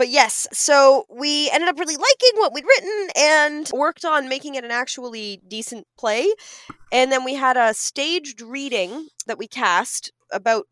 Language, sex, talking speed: English, female, 175 wpm